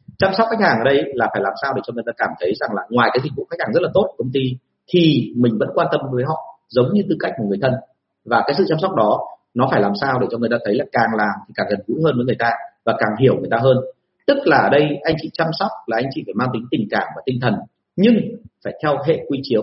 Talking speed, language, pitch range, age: 305 wpm, Vietnamese, 120-170 Hz, 40-59